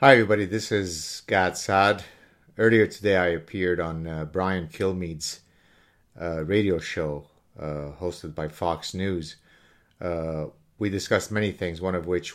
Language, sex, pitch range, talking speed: English, male, 85-105 Hz, 145 wpm